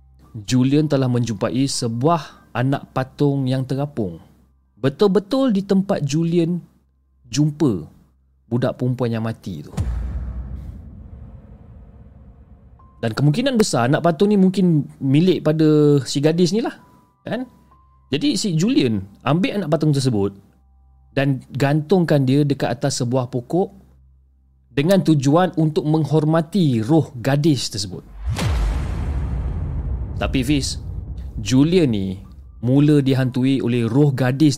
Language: Malay